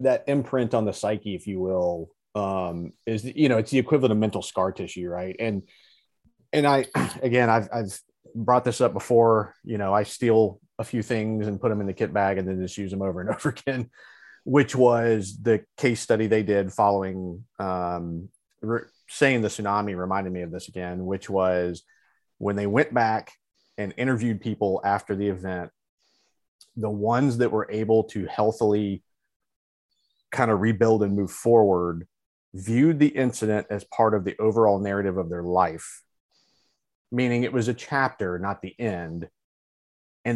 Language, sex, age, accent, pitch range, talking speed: English, male, 30-49, American, 95-120 Hz, 170 wpm